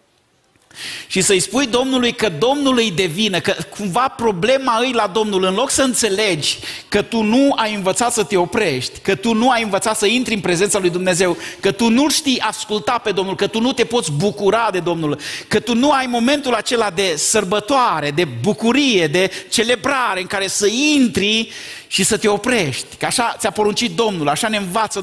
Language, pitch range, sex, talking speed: Romanian, 195-240 Hz, male, 190 wpm